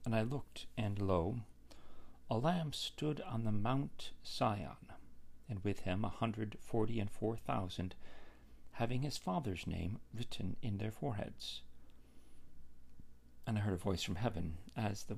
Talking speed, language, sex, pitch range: 150 wpm, English, male, 85-120 Hz